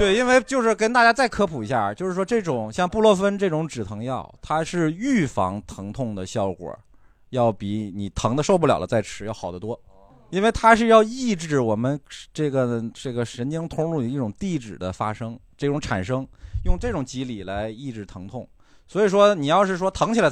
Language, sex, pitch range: Chinese, male, 105-170 Hz